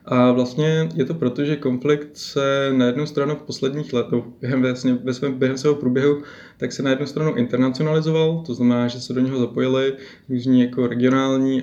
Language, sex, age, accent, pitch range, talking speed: Czech, male, 20-39, native, 120-135 Hz, 190 wpm